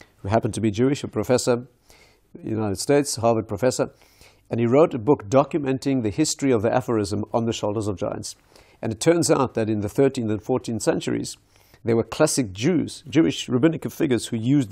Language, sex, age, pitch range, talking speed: English, male, 50-69, 110-130 Hz, 200 wpm